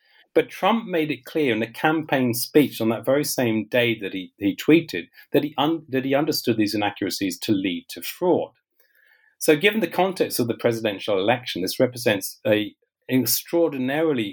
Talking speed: 170 wpm